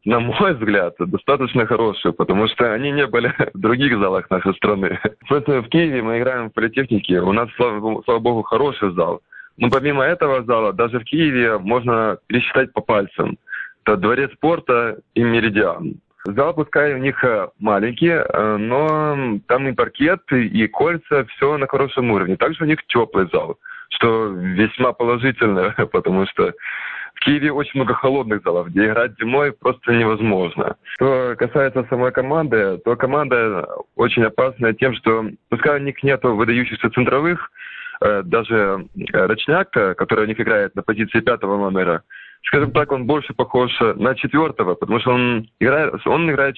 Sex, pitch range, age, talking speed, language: male, 110-140 Hz, 20-39, 150 wpm, Russian